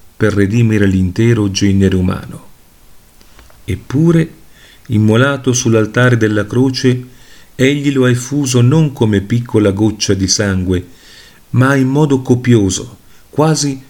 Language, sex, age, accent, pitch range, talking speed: Italian, male, 40-59, native, 95-125 Hz, 110 wpm